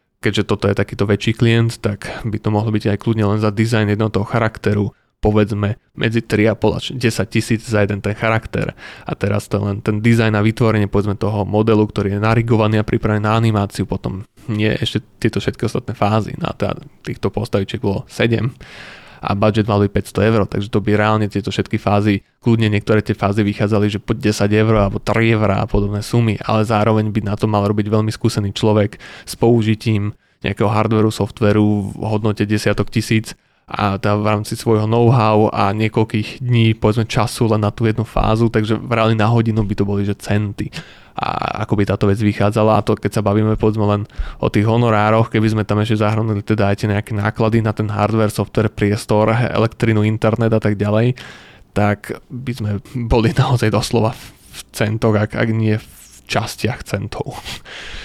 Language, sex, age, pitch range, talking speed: Slovak, male, 20-39, 105-115 Hz, 190 wpm